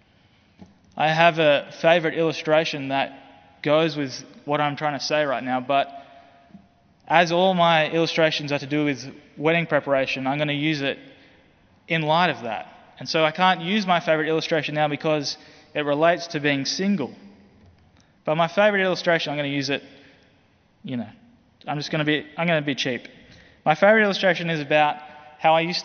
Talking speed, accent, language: 175 wpm, Australian, English